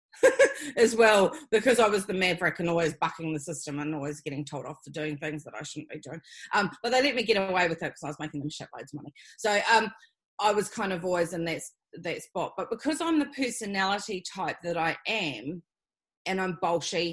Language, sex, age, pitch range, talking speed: English, female, 30-49, 165-215 Hz, 230 wpm